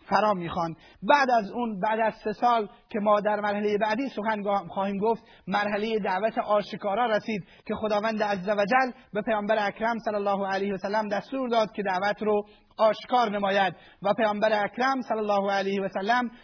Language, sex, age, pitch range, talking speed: Persian, male, 30-49, 200-230 Hz, 160 wpm